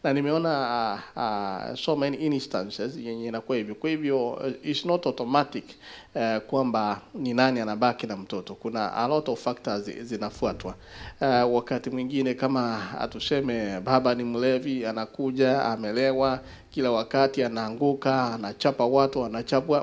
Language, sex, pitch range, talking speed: English, male, 120-145 Hz, 125 wpm